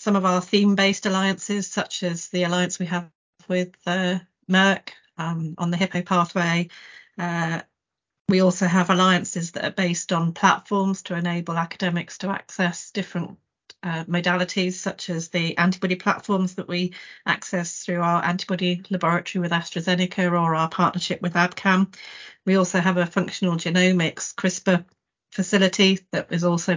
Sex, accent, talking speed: female, British, 150 wpm